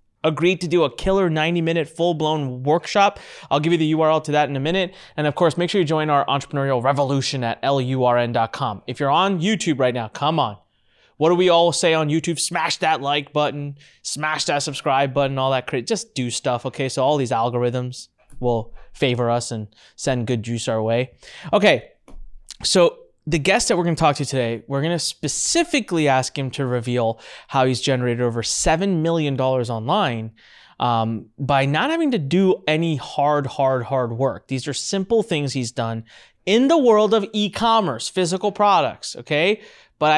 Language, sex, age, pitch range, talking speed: English, male, 20-39, 125-175 Hz, 185 wpm